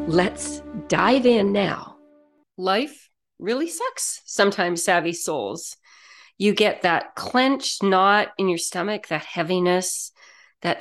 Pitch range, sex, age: 180-235 Hz, female, 40-59